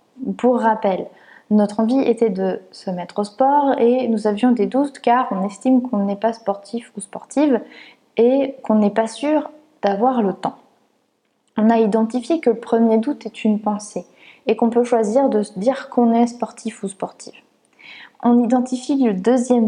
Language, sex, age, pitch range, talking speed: French, female, 20-39, 205-250 Hz, 175 wpm